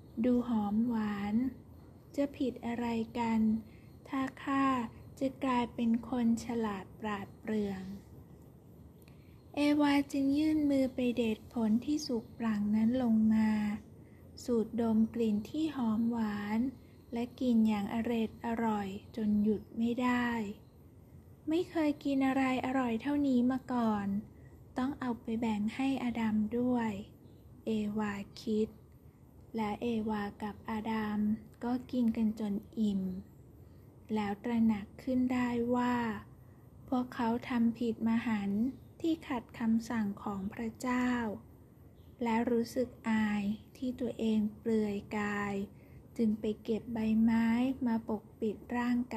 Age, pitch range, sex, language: 10-29, 215-250 Hz, female, Thai